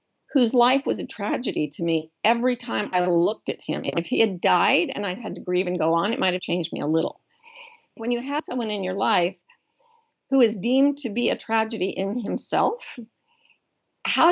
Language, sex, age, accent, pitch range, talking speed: English, female, 50-69, American, 180-265 Hz, 200 wpm